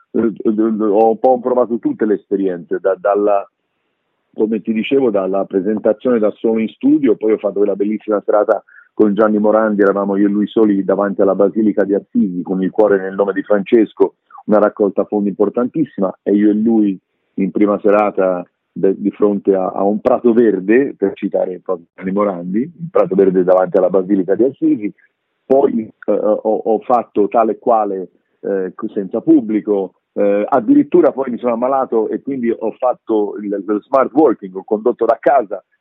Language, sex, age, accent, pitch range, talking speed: Italian, male, 50-69, native, 95-115 Hz, 170 wpm